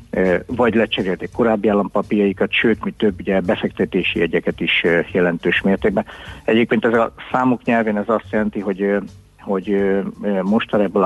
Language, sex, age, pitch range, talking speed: Hungarian, male, 60-79, 90-105 Hz, 135 wpm